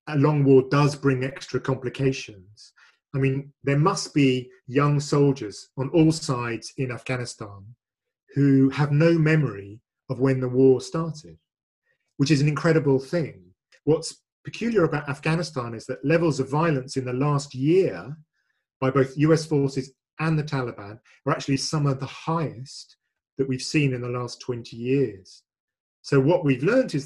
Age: 40-59